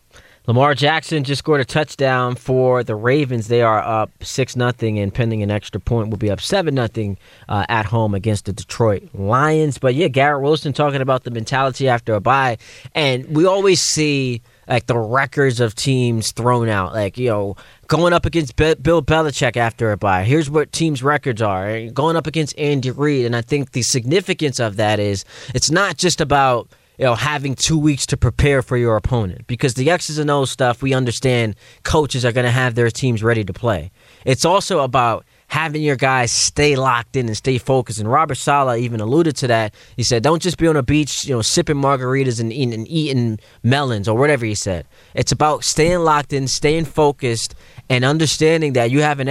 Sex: male